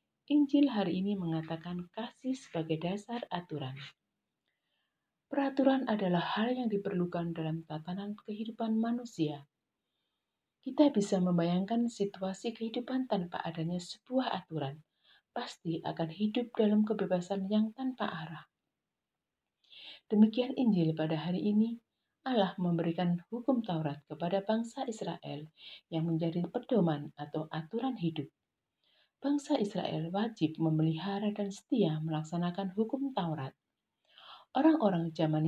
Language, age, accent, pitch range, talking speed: Indonesian, 50-69, native, 160-225 Hz, 105 wpm